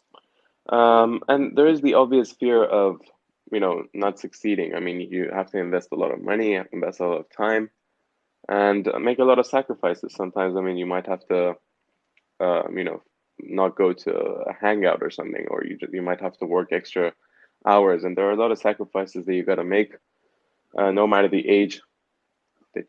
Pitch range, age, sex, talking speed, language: 95-110 Hz, 10-29, male, 205 wpm, English